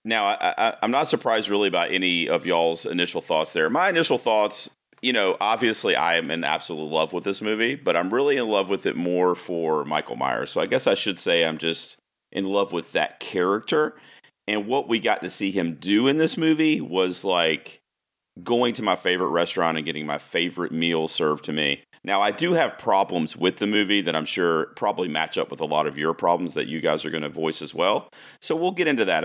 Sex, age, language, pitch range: male, 40-59, English, 80-105 Hz